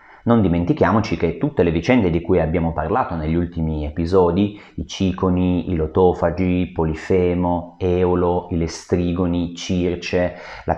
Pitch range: 85-105 Hz